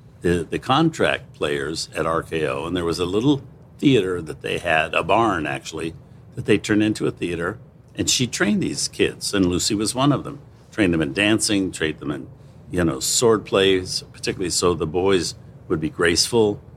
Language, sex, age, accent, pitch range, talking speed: English, male, 60-79, American, 95-140 Hz, 190 wpm